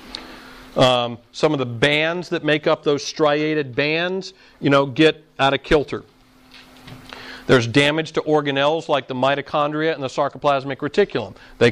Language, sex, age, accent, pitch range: Japanese, male, 40-59, American, 130-155 Hz